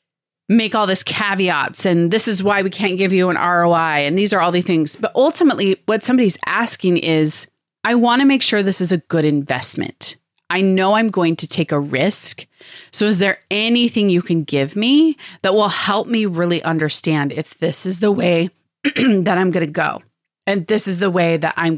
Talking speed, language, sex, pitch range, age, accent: 205 wpm, English, female, 155-195 Hz, 30-49, American